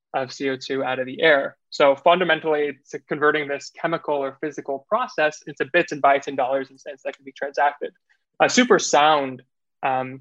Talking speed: 180 wpm